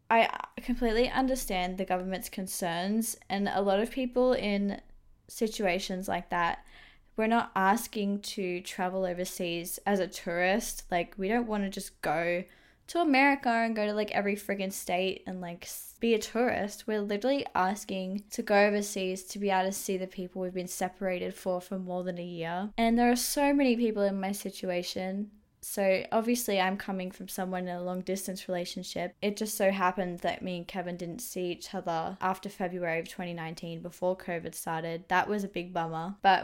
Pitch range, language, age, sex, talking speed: 185-215 Hz, English, 10-29, female, 185 wpm